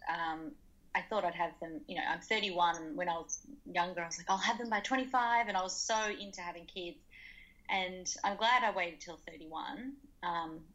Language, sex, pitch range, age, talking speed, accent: English, female, 170-215 Hz, 20-39, 205 wpm, Australian